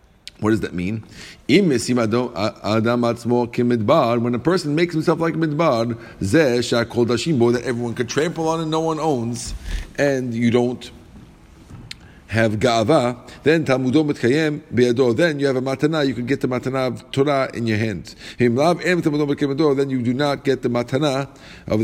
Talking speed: 135 wpm